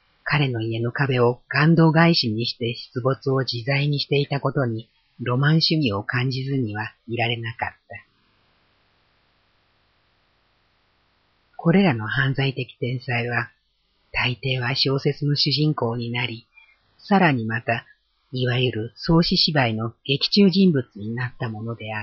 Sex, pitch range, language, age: female, 105-135 Hz, Japanese, 40-59